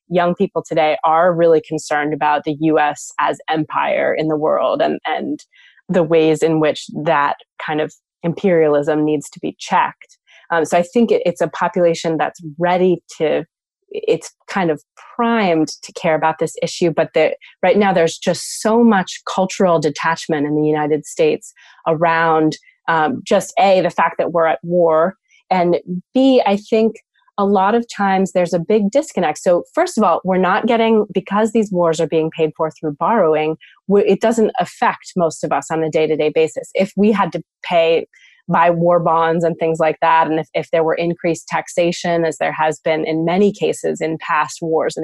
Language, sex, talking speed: English, female, 185 wpm